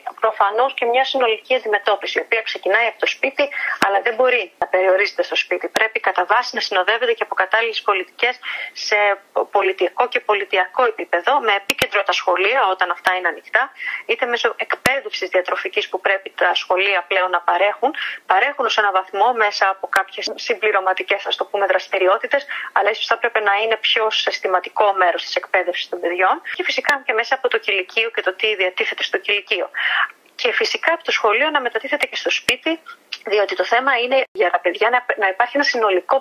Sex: female